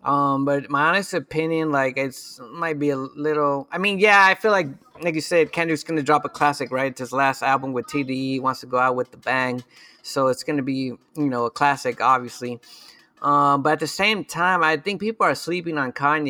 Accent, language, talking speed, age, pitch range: American, English, 230 wpm, 30-49, 135-155 Hz